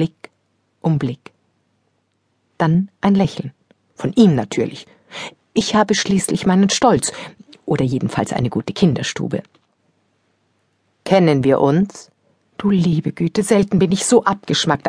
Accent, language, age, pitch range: German, German, 50-69, 145-210 Hz